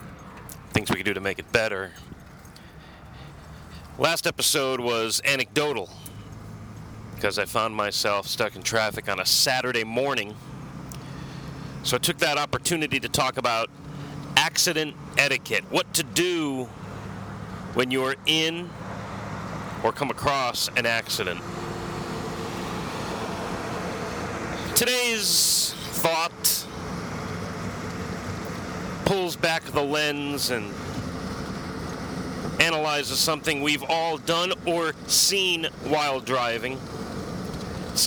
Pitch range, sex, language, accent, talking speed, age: 115-155 Hz, male, English, American, 95 wpm, 40-59